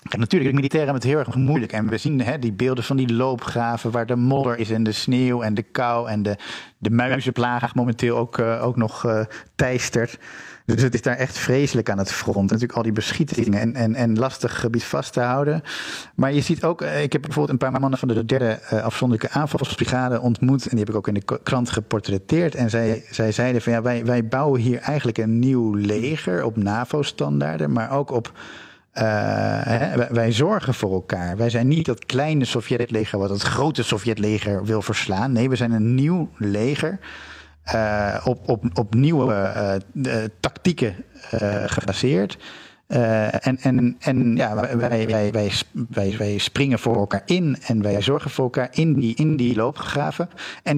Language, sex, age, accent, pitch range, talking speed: Dutch, male, 50-69, Dutch, 115-135 Hz, 185 wpm